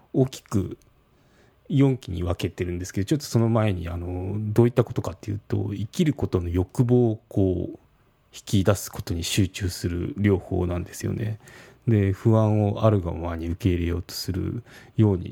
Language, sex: Japanese, male